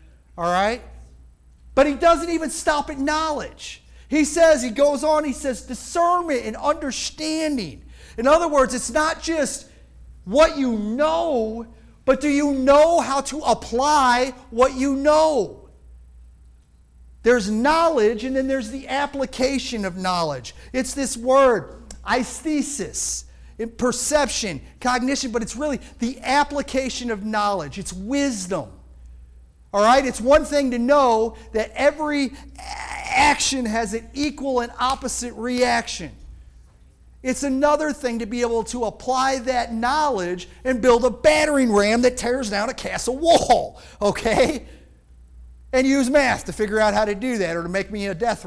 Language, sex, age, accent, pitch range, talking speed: English, male, 50-69, American, 205-285 Hz, 145 wpm